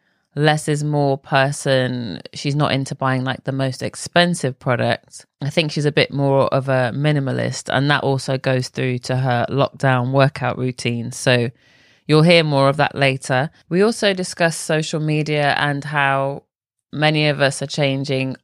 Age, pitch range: 20-39, 130-145 Hz